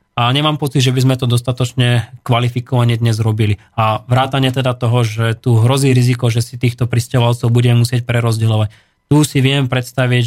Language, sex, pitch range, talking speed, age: Slovak, male, 120-135 Hz, 175 wpm, 20-39